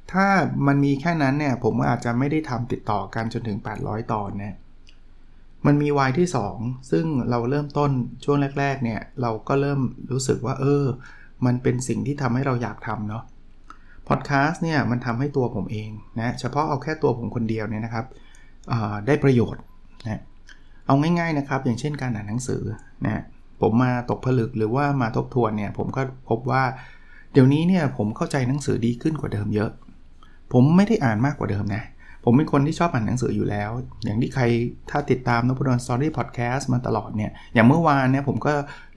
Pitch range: 110-140 Hz